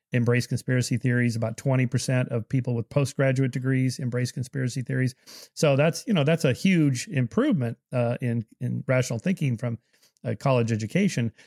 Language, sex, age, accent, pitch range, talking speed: English, male, 40-59, American, 125-150 Hz, 155 wpm